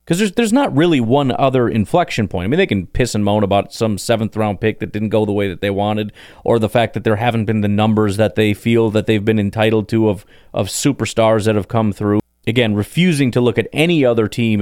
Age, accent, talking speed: 30-49, American, 245 wpm